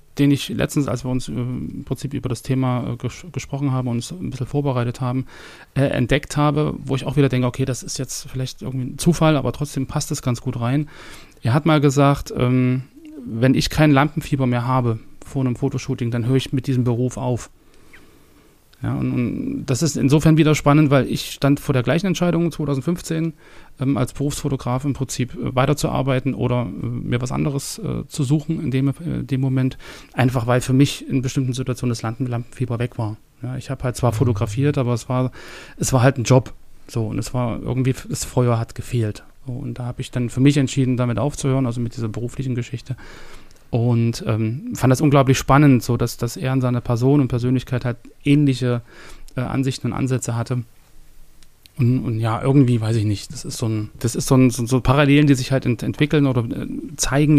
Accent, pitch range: German, 120-140 Hz